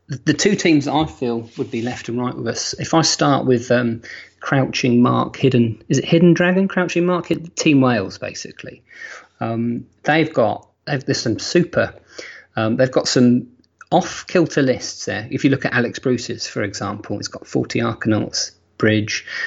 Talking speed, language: 170 wpm, English